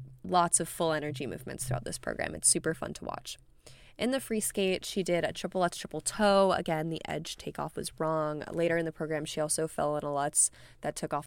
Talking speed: 230 wpm